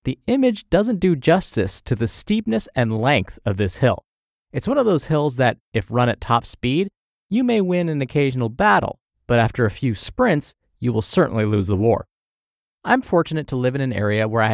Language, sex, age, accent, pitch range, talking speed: English, male, 30-49, American, 110-155 Hz, 205 wpm